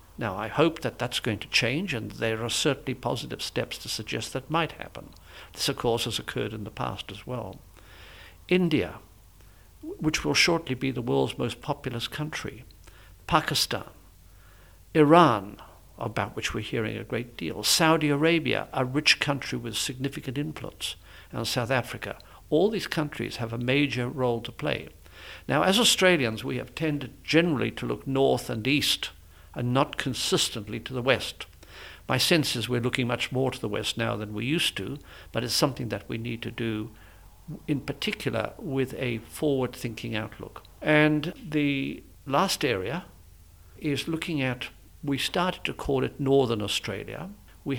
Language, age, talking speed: English, 60-79, 165 wpm